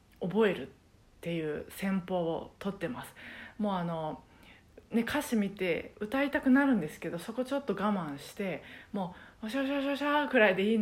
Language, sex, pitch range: Japanese, female, 170-240 Hz